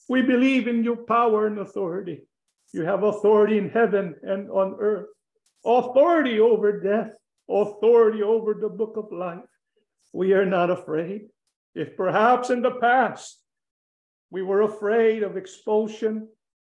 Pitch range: 205-240 Hz